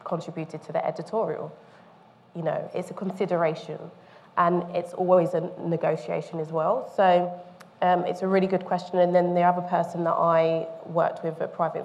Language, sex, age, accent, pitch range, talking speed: English, female, 20-39, British, 165-185 Hz, 170 wpm